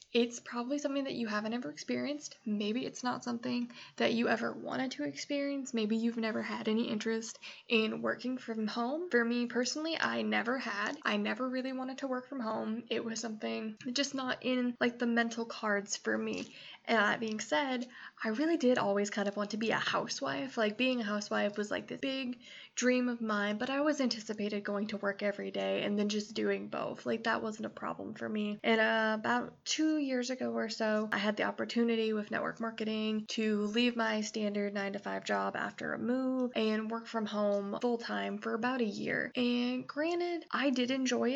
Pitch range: 205-245 Hz